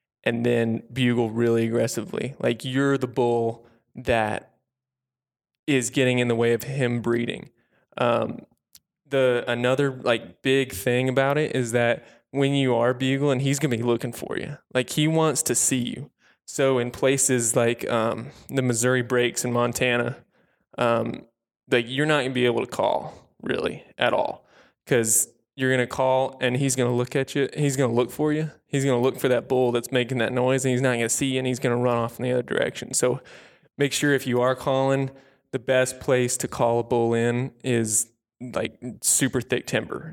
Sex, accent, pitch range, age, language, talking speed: male, American, 120-130 Hz, 20-39, English, 190 wpm